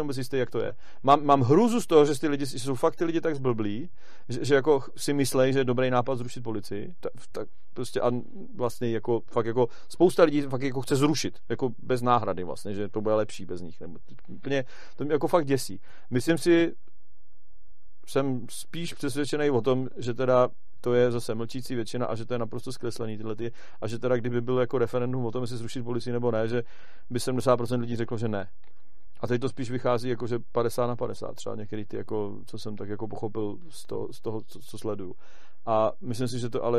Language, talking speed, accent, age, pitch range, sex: Czech, 220 wpm, native, 40-59, 110-135 Hz, male